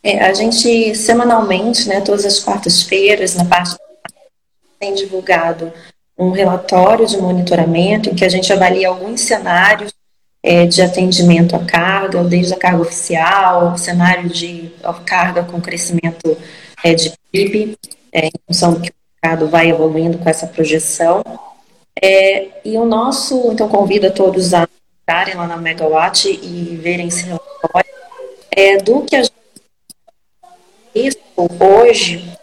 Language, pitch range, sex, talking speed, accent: Portuguese, 175-210 Hz, female, 140 wpm, Brazilian